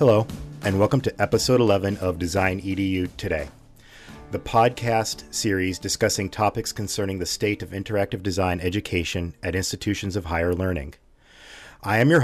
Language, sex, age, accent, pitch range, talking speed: English, male, 40-59, American, 90-115 Hz, 145 wpm